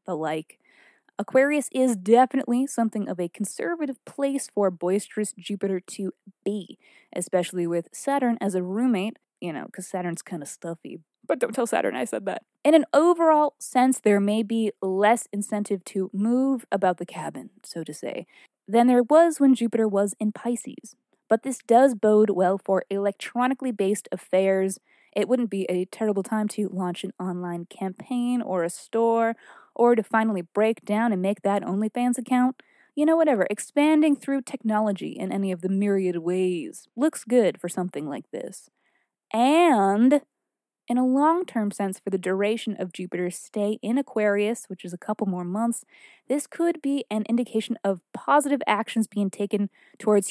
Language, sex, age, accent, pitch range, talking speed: English, female, 20-39, American, 195-260 Hz, 170 wpm